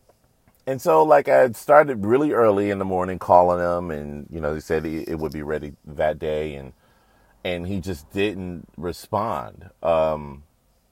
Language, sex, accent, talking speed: English, male, American, 175 wpm